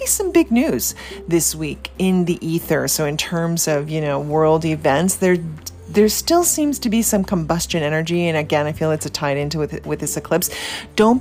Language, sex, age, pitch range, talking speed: English, female, 30-49, 150-180 Hz, 205 wpm